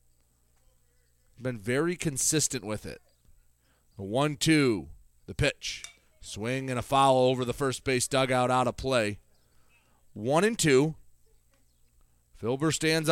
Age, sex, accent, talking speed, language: 30-49, male, American, 120 wpm, English